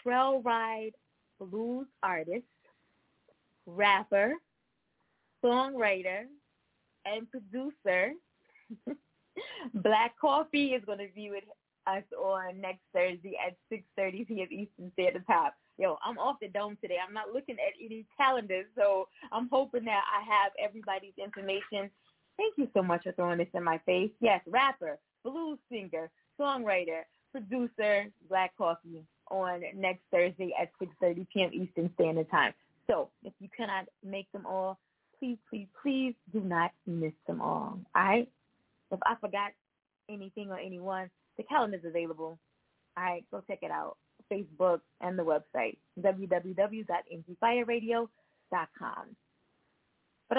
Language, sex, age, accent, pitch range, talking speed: English, female, 20-39, American, 185-240 Hz, 130 wpm